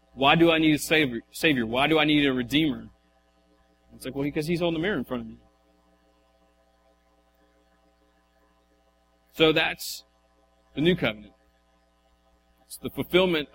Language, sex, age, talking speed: English, male, 30-49, 140 wpm